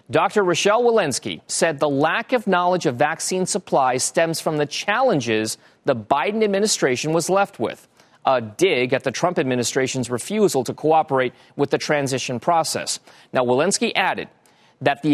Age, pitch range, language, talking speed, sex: 40-59, 135-195 Hz, English, 155 wpm, male